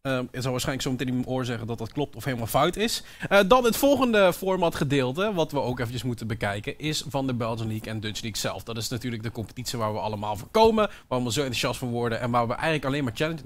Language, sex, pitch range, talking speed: Dutch, male, 125-170 Hz, 270 wpm